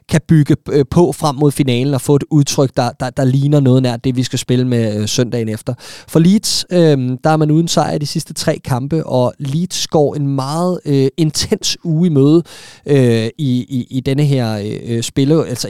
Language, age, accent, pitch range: Danish, 20-39, native, 125-150 Hz